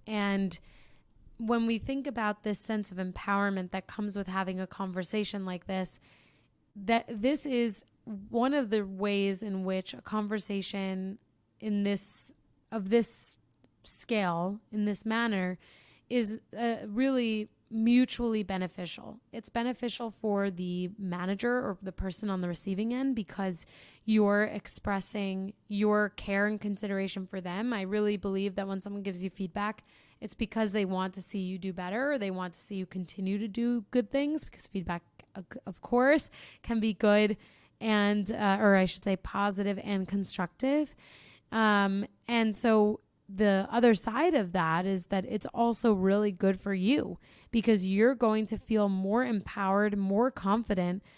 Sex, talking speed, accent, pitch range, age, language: female, 155 wpm, American, 195-225 Hz, 20-39, English